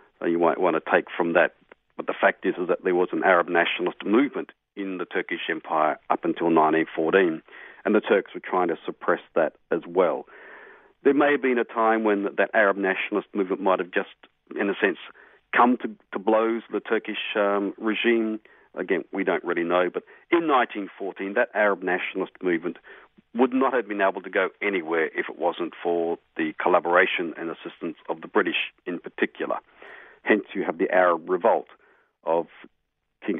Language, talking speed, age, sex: English, 185 wpm, 50-69, male